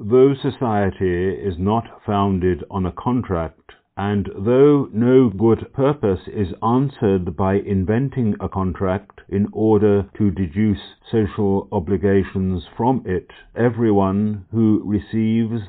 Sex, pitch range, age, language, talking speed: male, 95-110 Hz, 50-69, English, 115 wpm